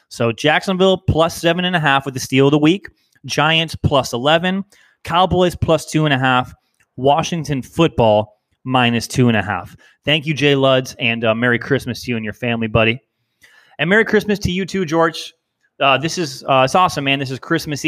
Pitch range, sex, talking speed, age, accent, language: 125-160 Hz, male, 200 wpm, 30-49, American, English